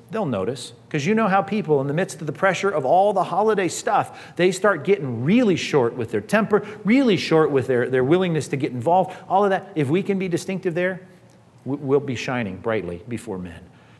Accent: American